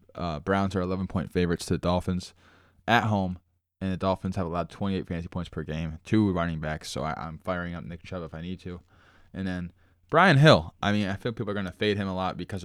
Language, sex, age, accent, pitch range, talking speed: English, male, 20-39, American, 85-95 Hz, 245 wpm